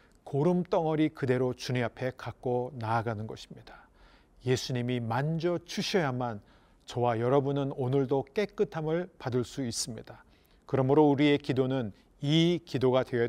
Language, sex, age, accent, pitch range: Korean, male, 40-59, native, 125-155 Hz